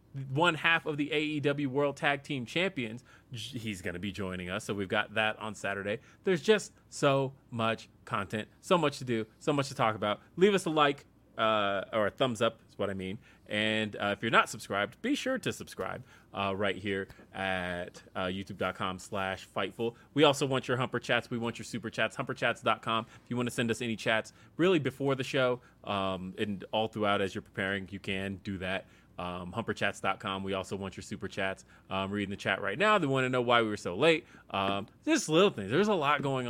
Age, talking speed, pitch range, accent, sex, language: 30-49, 215 wpm, 100-125 Hz, American, male, English